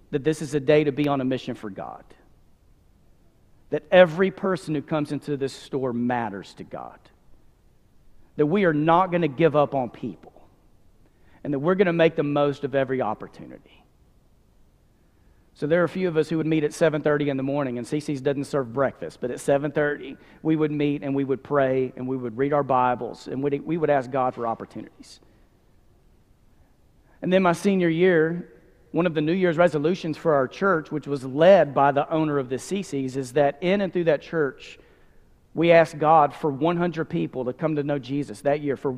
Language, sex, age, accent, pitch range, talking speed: English, male, 40-59, American, 140-175 Hz, 200 wpm